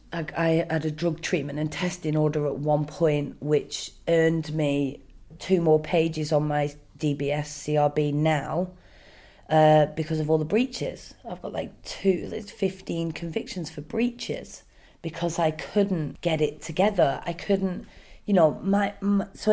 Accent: British